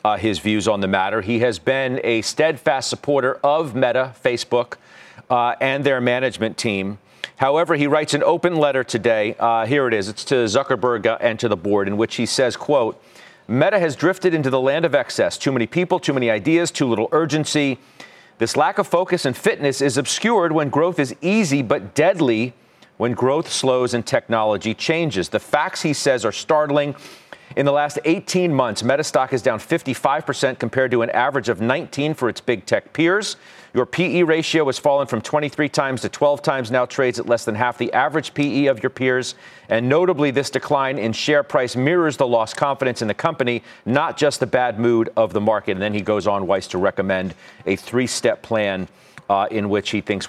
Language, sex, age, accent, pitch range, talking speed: English, male, 40-59, American, 115-145 Hz, 200 wpm